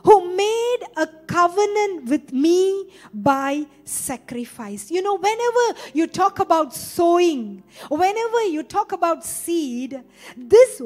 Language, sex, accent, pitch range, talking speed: English, female, Indian, 260-395 Hz, 115 wpm